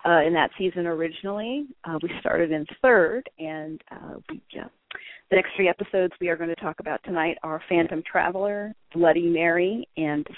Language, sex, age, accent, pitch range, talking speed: English, female, 40-59, American, 155-185 Hz, 180 wpm